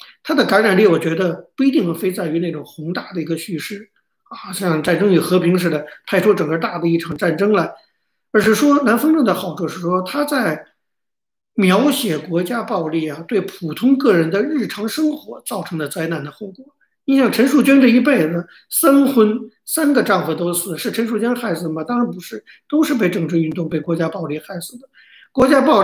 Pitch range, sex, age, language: 165-230 Hz, male, 50-69, Chinese